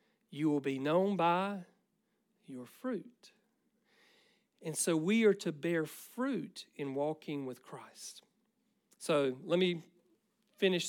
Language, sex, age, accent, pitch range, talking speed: English, male, 50-69, American, 150-215 Hz, 120 wpm